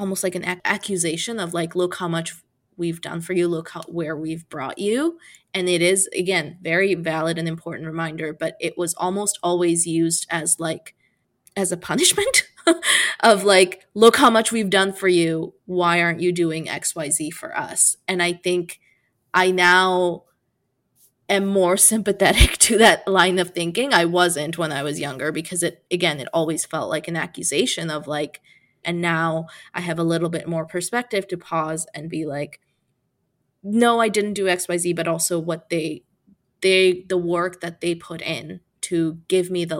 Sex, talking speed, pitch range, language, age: female, 180 wpm, 165-190 Hz, English, 20-39